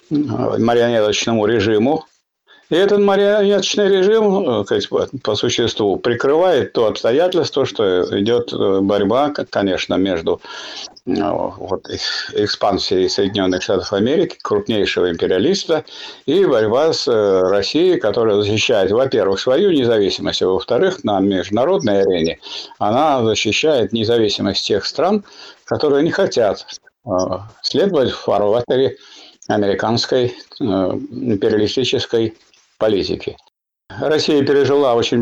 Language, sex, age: Russian, male, 50-69